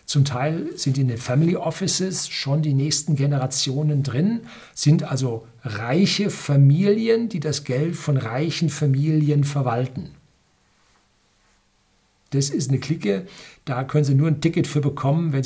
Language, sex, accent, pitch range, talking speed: German, male, German, 125-155 Hz, 140 wpm